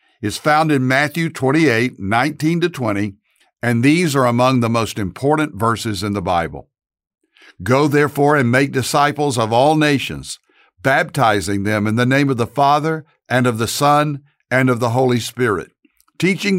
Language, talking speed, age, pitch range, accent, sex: English, 160 wpm, 60-79, 115-145 Hz, American, male